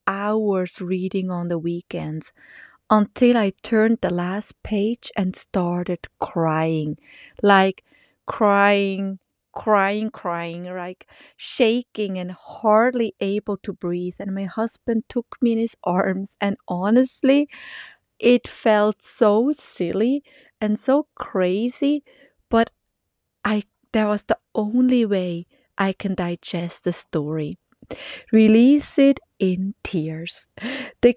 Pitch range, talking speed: 190-240 Hz, 115 wpm